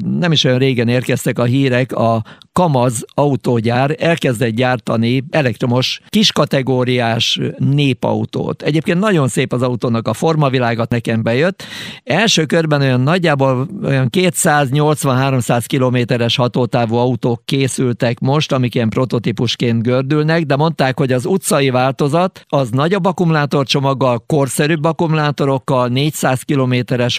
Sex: male